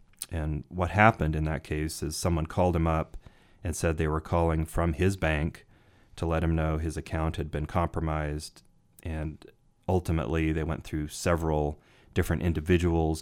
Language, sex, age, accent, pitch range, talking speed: English, male, 30-49, American, 75-85 Hz, 165 wpm